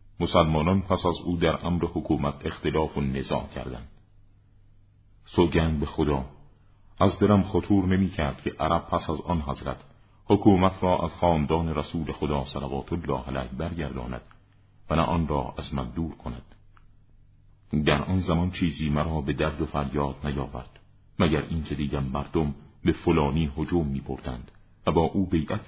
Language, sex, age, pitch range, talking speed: Persian, male, 50-69, 70-95 Hz, 150 wpm